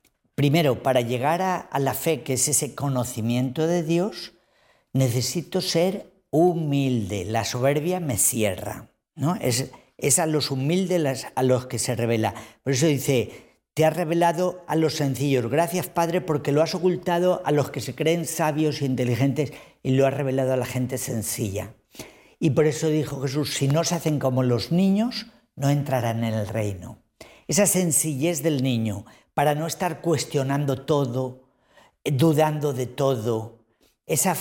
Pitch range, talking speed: 125-165 Hz, 160 wpm